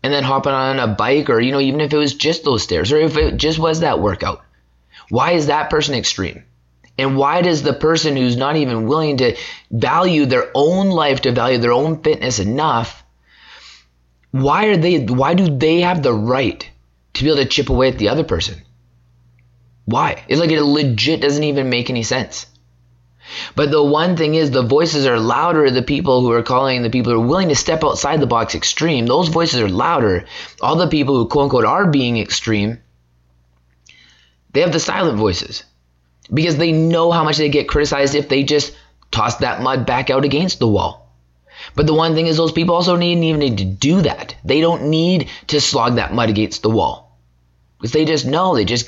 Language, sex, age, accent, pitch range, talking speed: English, male, 20-39, American, 95-155 Hz, 205 wpm